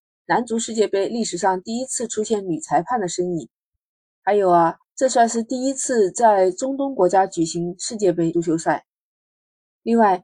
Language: Chinese